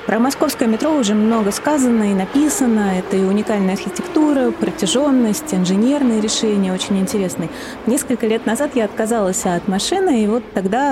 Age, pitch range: 30-49, 195-245 Hz